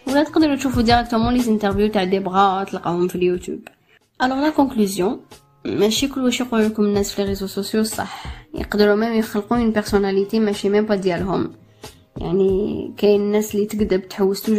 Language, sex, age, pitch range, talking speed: Arabic, female, 20-39, 195-225 Hz, 155 wpm